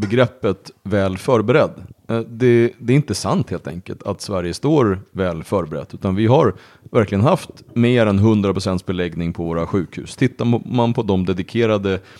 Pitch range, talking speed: 95-125 Hz, 160 wpm